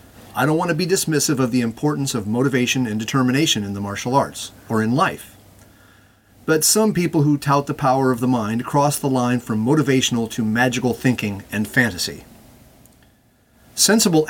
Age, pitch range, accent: 30-49, 115-145 Hz, American